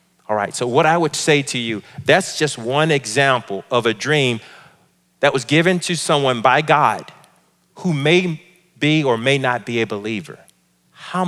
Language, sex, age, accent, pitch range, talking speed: English, male, 40-59, American, 105-160 Hz, 175 wpm